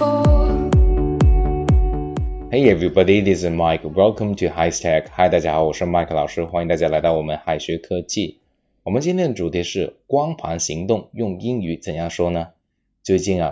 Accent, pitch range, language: native, 85-100 Hz, Chinese